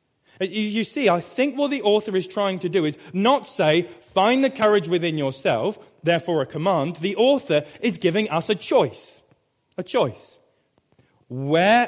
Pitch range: 155-220 Hz